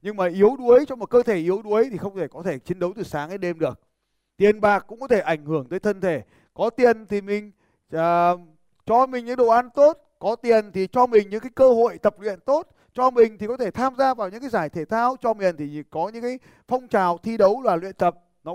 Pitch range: 175-235 Hz